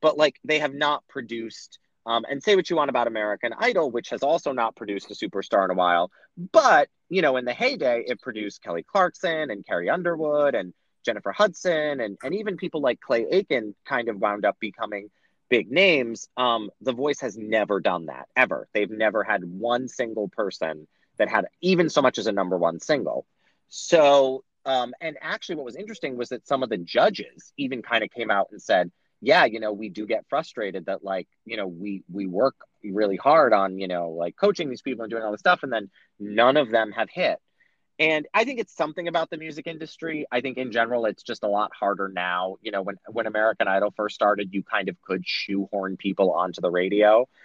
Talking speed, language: 215 wpm, English